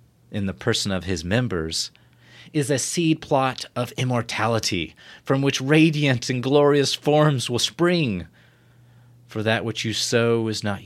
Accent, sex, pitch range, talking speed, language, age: American, male, 105-140 Hz, 150 wpm, English, 40-59